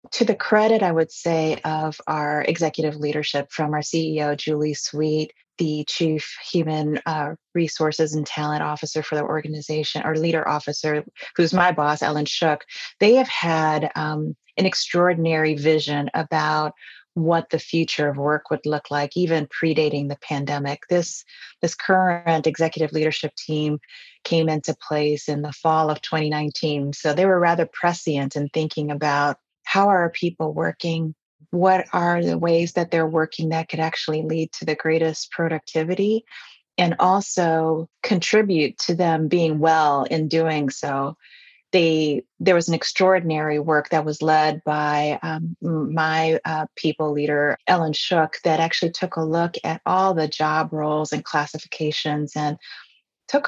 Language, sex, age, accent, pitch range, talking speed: English, female, 30-49, American, 150-165 Hz, 155 wpm